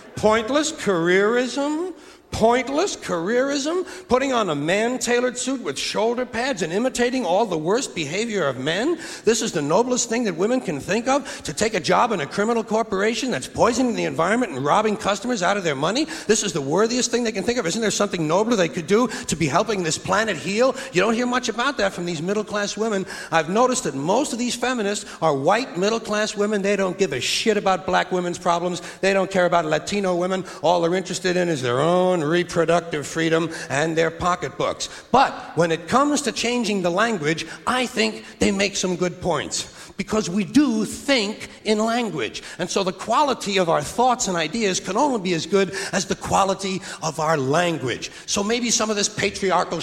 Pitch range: 180-240 Hz